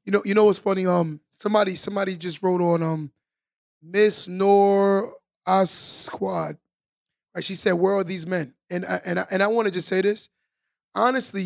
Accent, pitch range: American, 180-215 Hz